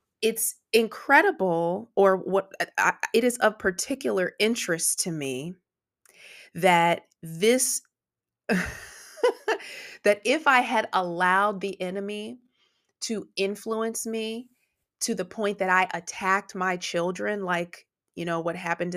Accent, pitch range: American, 175-225 Hz